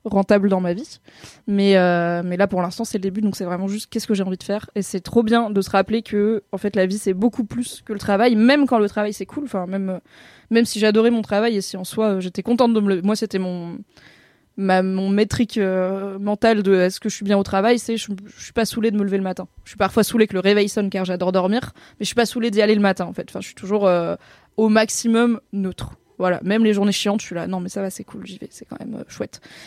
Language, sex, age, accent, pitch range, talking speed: French, female, 20-39, French, 195-230 Hz, 285 wpm